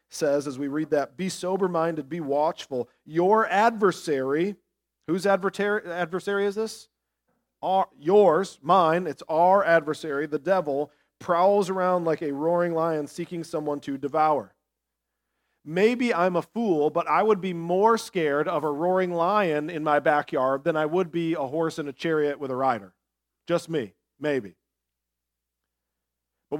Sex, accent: male, American